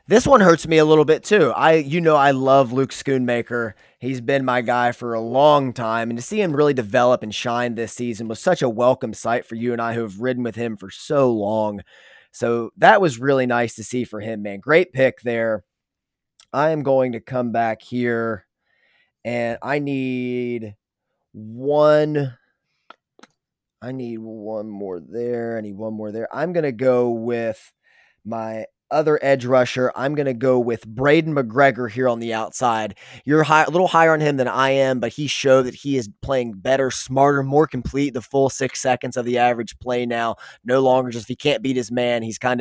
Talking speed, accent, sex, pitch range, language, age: 205 wpm, American, male, 115-140 Hz, English, 20-39